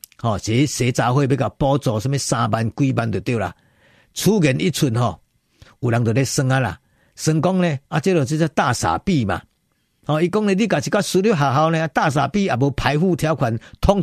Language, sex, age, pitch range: Chinese, male, 50-69, 125-175 Hz